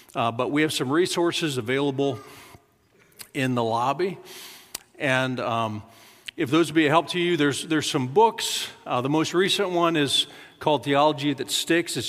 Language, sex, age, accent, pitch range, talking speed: English, male, 50-69, American, 130-165 Hz, 175 wpm